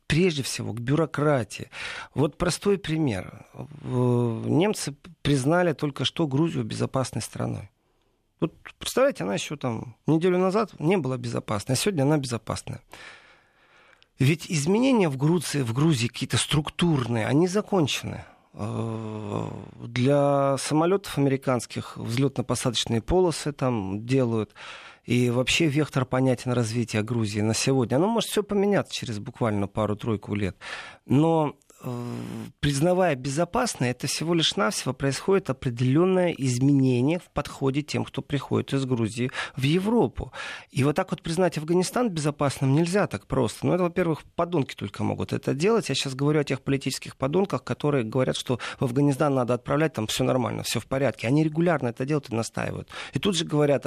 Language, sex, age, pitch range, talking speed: Russian, male, 40-59, 120-160 Hz, 145 wpm